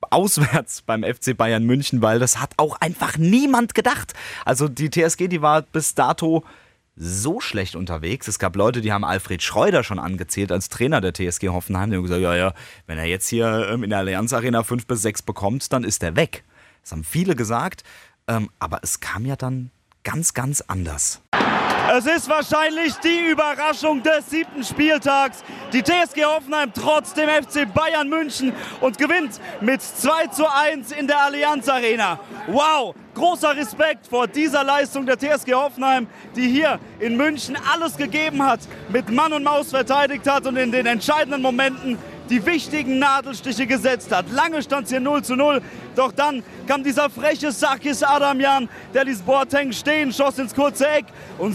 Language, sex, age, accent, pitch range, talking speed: German, male, 30-49, German, 170-285 Hz, 175 wpm